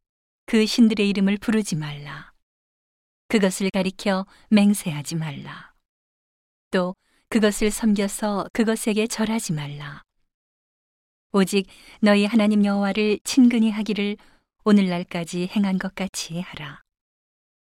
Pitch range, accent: 175-210 Hz, native